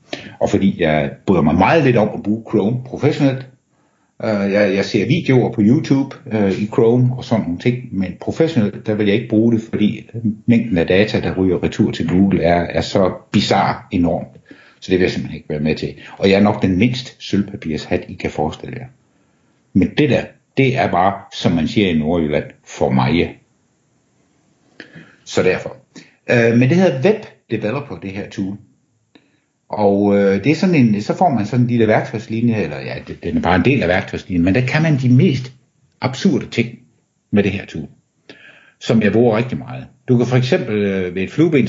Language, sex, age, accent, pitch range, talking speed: Danish, male, 60-79, native, 100-125 Hz, 195 wpm